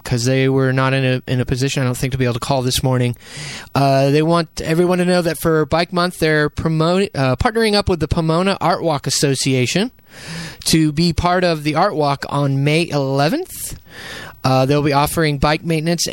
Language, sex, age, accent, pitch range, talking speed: English, male, 20-39, American, 140-170 Hz, 210 wpm